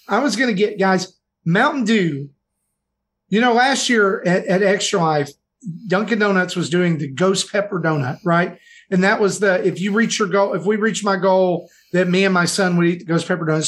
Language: English